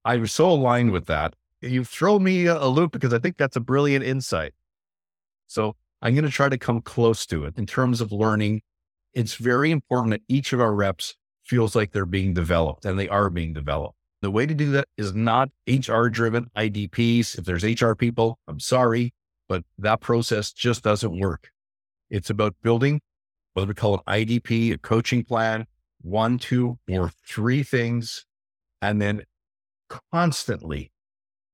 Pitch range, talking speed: 100-130 Hz, 175 wpm